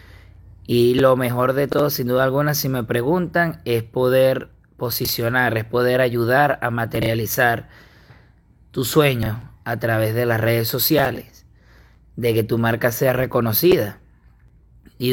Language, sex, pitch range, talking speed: Spanish, male, 115-130 Hz, 135 wpm